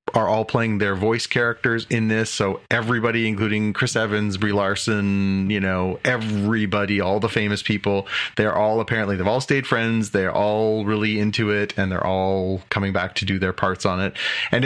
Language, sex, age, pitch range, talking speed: English, male, 30-49, 95-115 Hz, 190 wpm